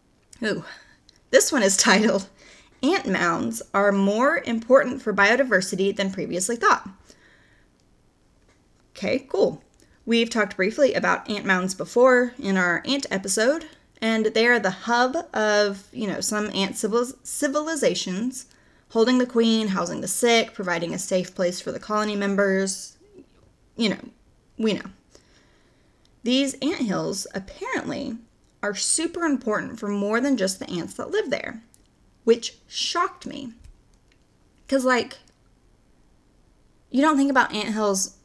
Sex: female